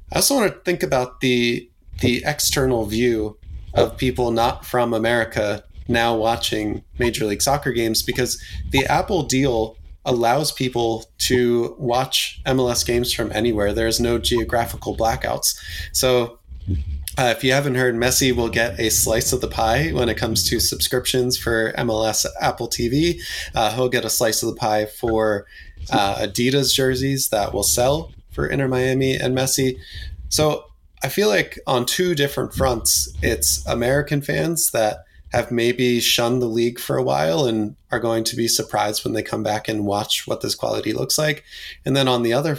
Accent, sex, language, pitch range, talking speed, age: American, male, English, 110-130 Hz, 170 wpm, 20-39